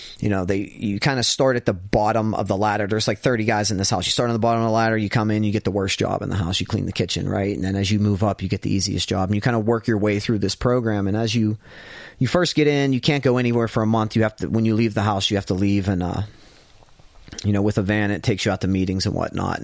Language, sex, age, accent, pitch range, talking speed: English, male, 30-49, American, 100-130 Hz, 325 wpm